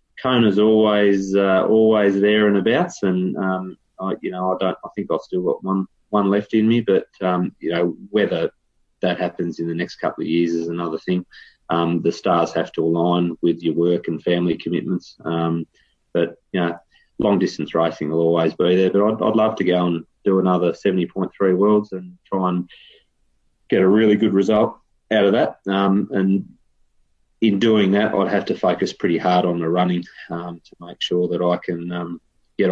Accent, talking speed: Australian, 200 wpm